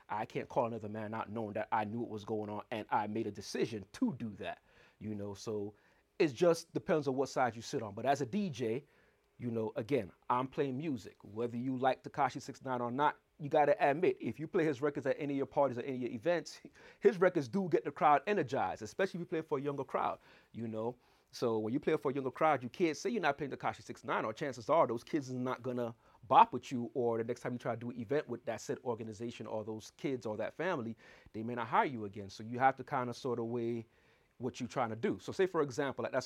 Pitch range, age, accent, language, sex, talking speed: 115-155 Hz, 30-49, American, English, male, 265 wpm